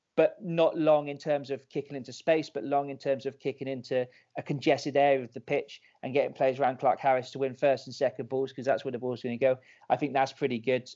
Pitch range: 135-155 Hz